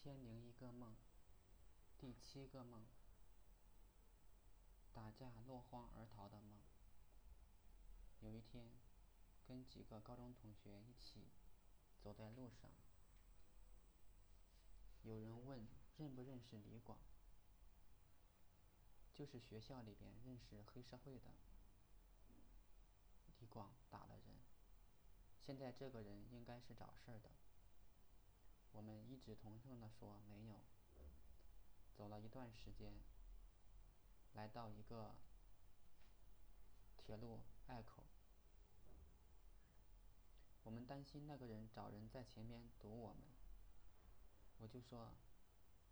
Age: 20-39